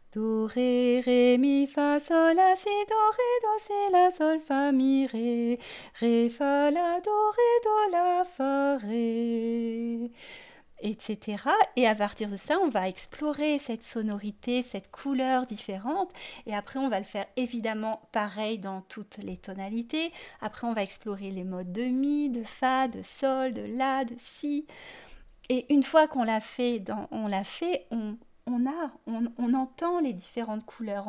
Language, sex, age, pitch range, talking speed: French, female, 30-49, 220-280 Hz, 170 wpm